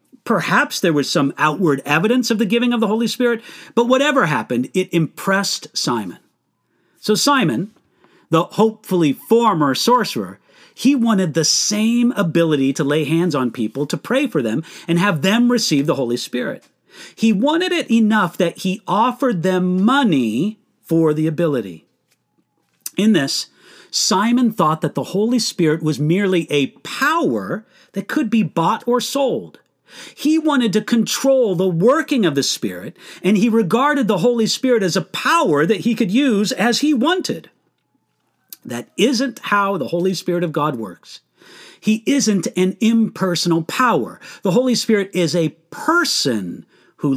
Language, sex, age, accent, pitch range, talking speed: English, male, 40-59, American, 170-240 Hz, 155 wpm